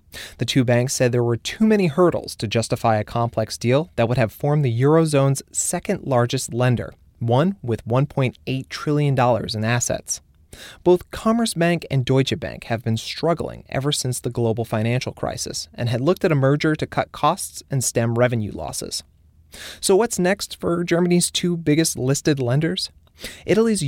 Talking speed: 165 wpm